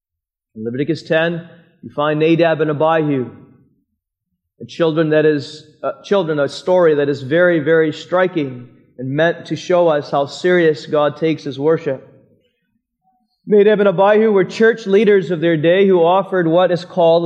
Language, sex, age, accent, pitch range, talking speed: English, male, 30-49, American, 155-195 Hz, 155 wpm